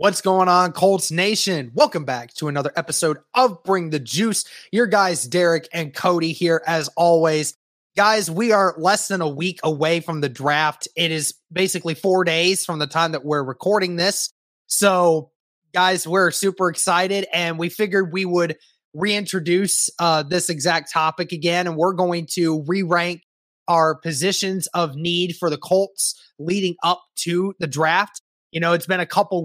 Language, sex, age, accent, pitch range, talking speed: English, male, 20-39, American, 160-185 Hz, 170 wpm